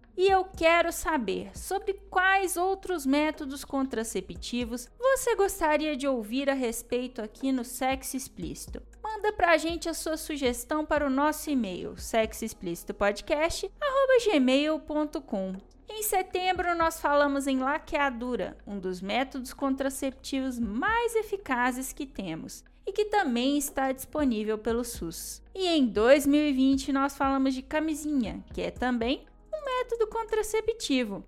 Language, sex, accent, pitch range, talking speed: Portuguese, female, Brazilian, 245-345 Hz, 125 wpm